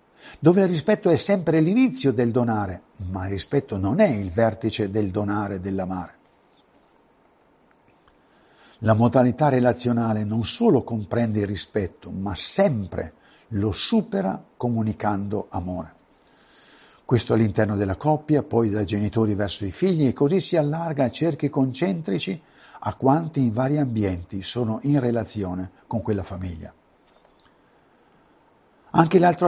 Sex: male